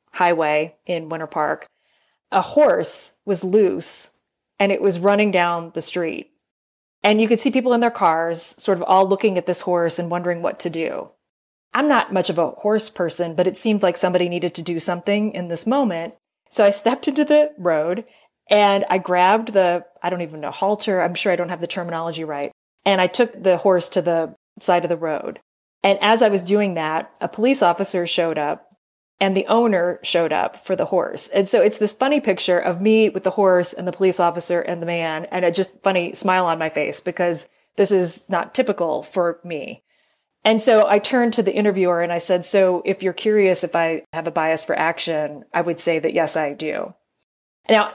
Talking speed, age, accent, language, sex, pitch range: 210 wpm, 20-39, American, English, female, 170-205 Hz